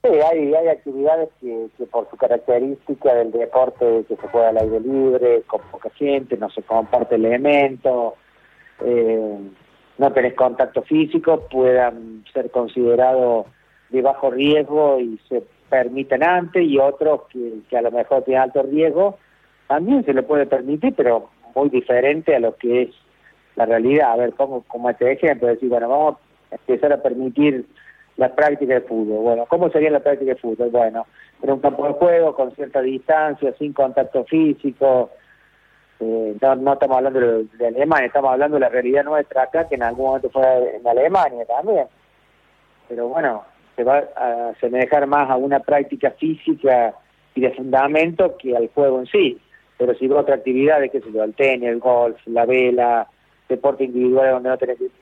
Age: 40-59